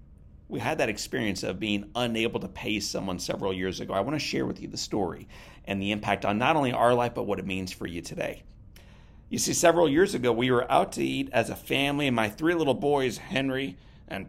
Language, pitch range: English, 100-125 Hz